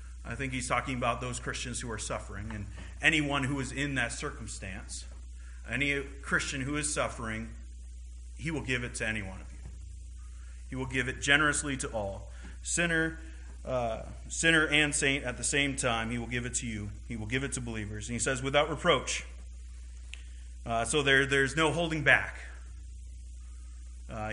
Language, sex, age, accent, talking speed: English, male, 30-49, American, 180 wpm